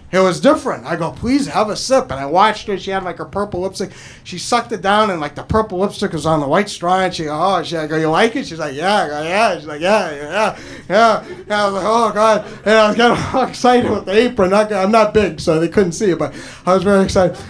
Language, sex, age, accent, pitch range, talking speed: English, male, 30-49, American, 175-235 Hz, 285 wpm